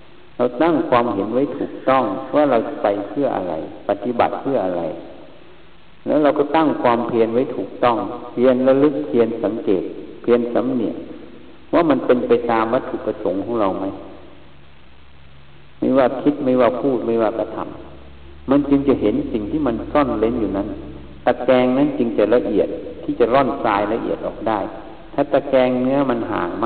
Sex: male